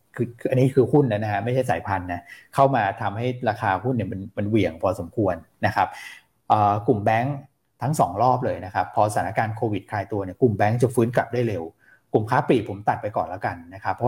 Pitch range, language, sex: 100-130 Hz, Thai, male